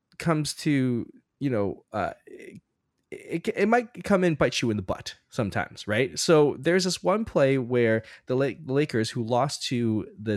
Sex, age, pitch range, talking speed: male, 10-29, 125-195 Hz, 180 wpm